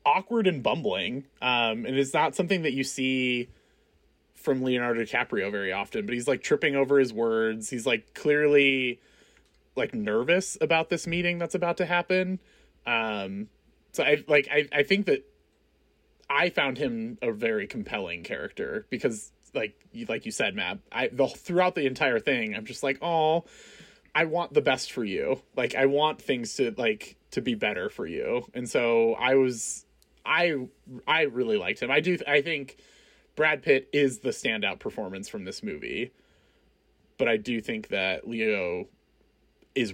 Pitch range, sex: 115-175 Hz, male